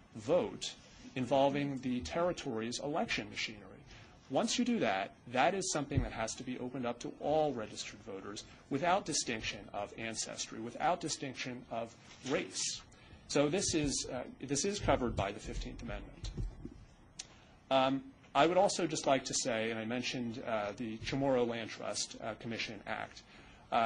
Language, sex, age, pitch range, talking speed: English, male, 30-49, 115-140 Hz, 155 wpm